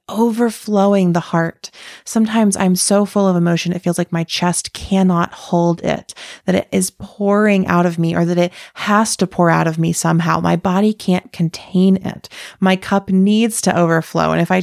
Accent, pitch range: American, 170-200 Hz